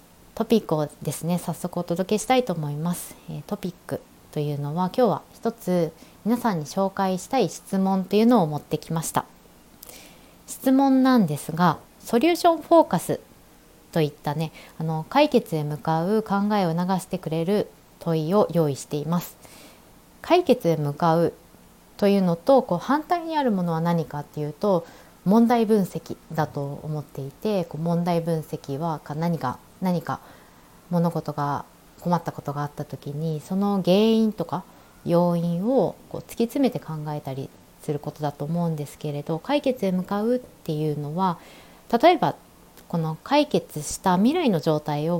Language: Japanese